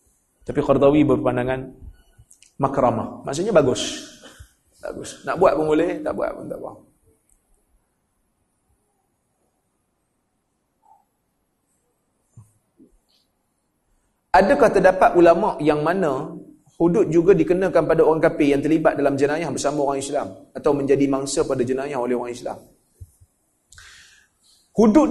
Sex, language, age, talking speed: male, Malay, 30-49, 105 wpm